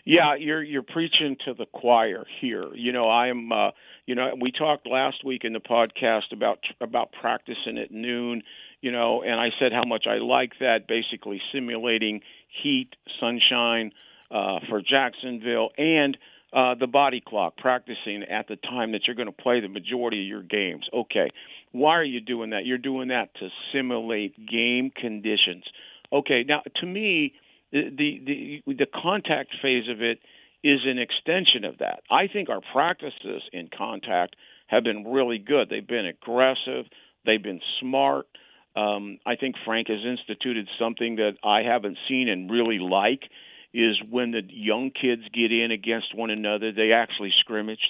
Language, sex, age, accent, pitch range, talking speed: English, male, 50-69, American, 110-130 Hz, 170 wpm